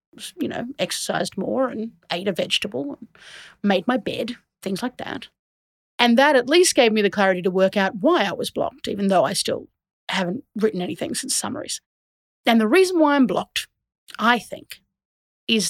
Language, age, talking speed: English, 30-49, 180 wpm